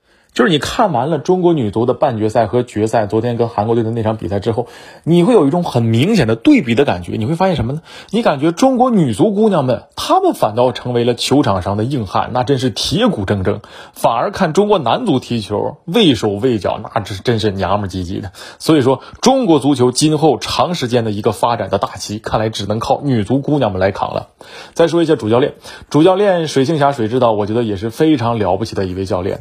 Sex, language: male, Chinese